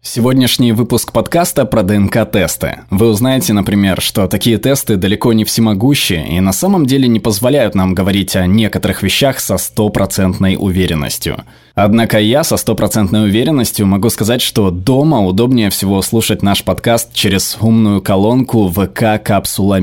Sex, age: male, 20-39